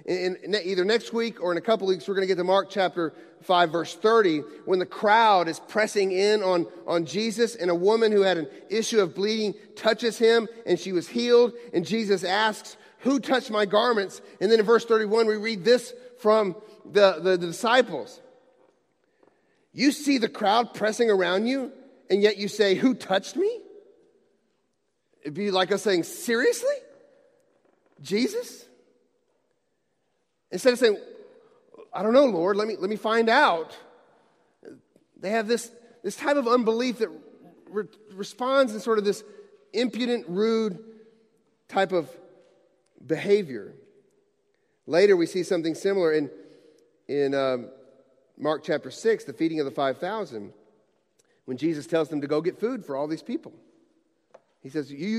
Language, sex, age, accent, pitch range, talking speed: English, male, 40-59, American, 185-245 Hz, 160 wpm